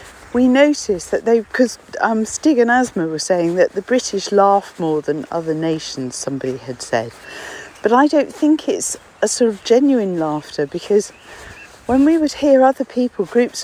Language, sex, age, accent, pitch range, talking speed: English, female, 50-69, British, 195-260 Hz, 170 wpm